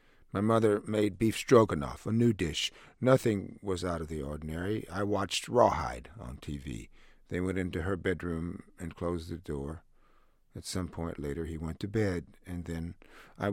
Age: 50-69